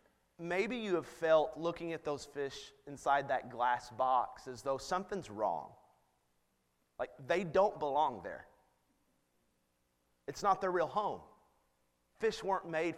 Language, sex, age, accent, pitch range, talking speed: English, male, 30-49, American, 120-190 Hz, 135 wpm